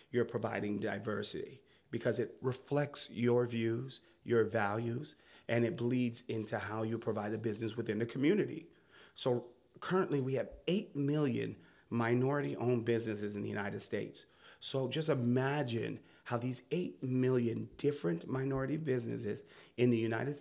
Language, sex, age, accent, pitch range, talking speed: English, male, 30-49, American, 115-135 Hz, 140 wpm